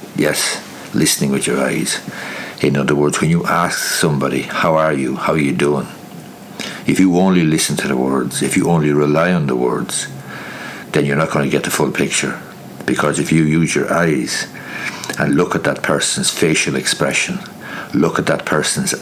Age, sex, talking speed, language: 60-79, male, 185 wpm, English